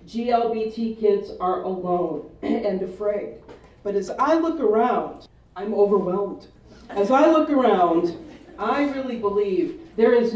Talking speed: 125 wpm